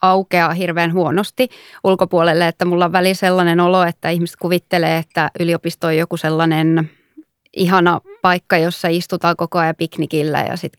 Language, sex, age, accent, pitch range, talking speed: Finnish, female, 20-39, native, 165-190 Hz, 150 wpm